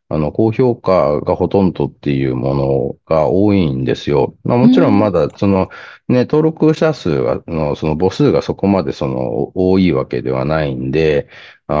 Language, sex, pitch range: Japanese, male, 75-105 Hz